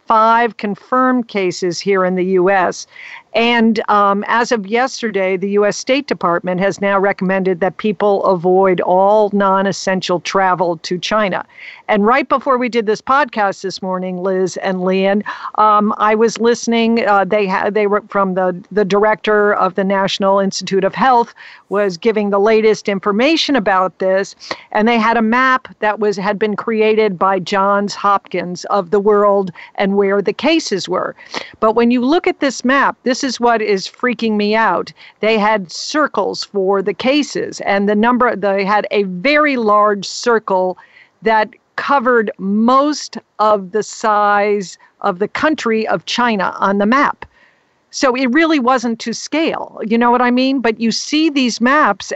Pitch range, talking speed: 195-240 Hz, 165 wpm